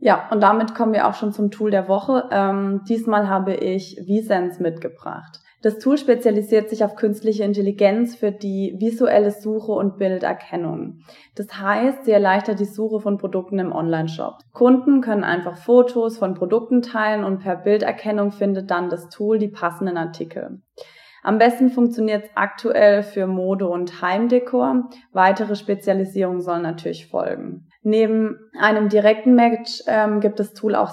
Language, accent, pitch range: German, German, 190-220 Hz